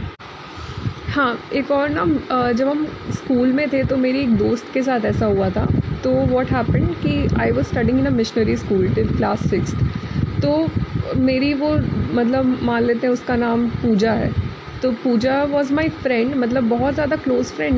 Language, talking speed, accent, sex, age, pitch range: Hindi, 180 wpm, native, female, 20-39, 225-280 Hz